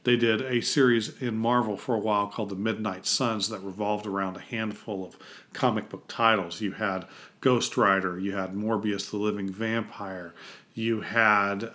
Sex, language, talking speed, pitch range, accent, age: male, English, 175 wpm, 100-120 Hz, American, 40-59